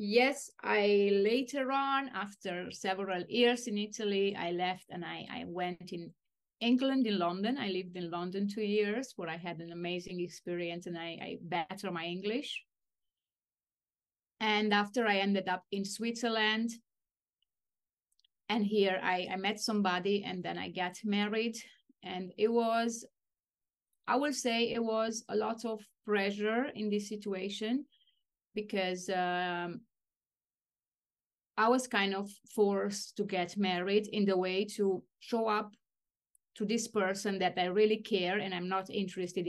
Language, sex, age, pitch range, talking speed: English, female, 30-49, 185-220 Hz, 145 wpm